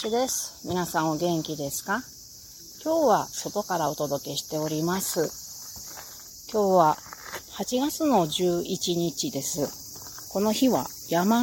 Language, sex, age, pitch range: Japanese, female, 40-59, 160-220 Hz